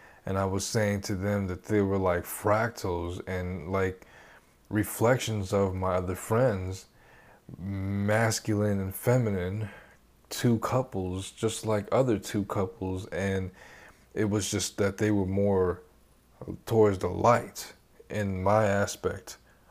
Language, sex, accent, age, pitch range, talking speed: English, male, American, 20-39, 95-115 Hz, 130 wpm